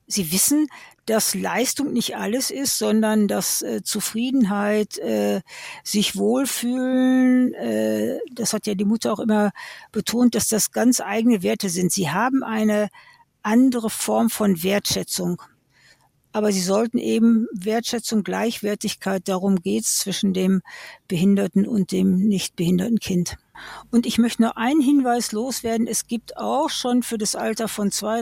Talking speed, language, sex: 145 wpm, German, female